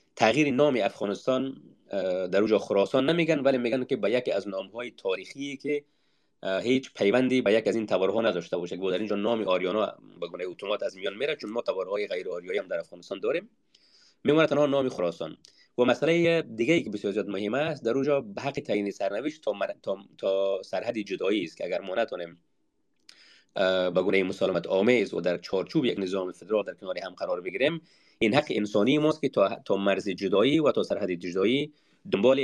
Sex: male